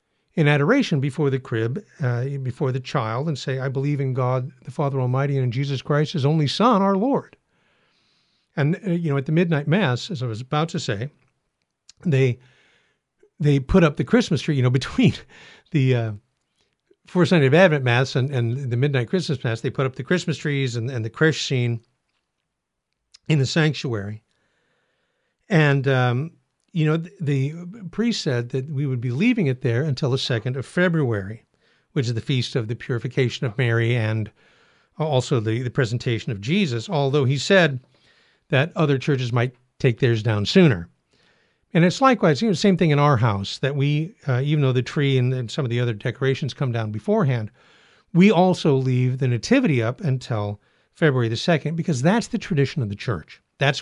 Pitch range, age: 125-155 Hz, 60-79